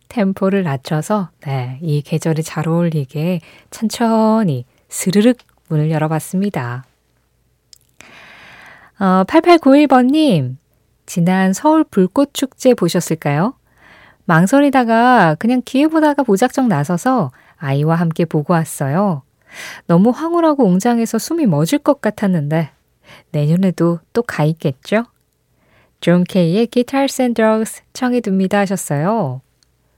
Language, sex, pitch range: Korean, female, 160-235 Hz